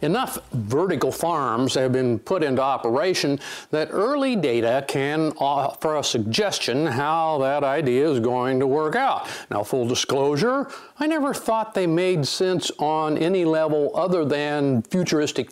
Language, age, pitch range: English, 60-79, 140-205 Hz